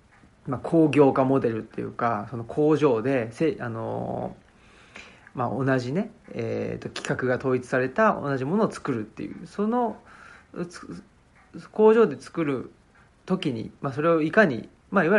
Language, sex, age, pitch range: Japanese, male, 40-59, 115-180 Hz